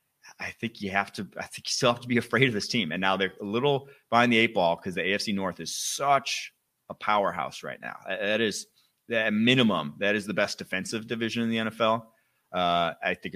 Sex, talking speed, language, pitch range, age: male, 230 wpm, English, 85-115 Hz, 30-49